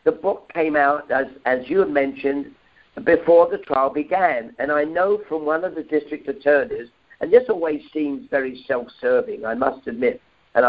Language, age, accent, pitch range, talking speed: English, 60-79, British, 140-185 Hz, 185 wpm